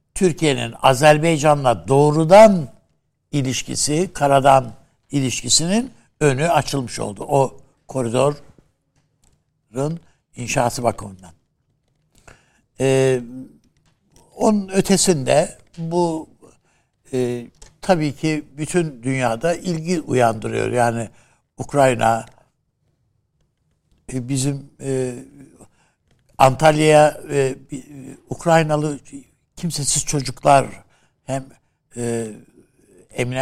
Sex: male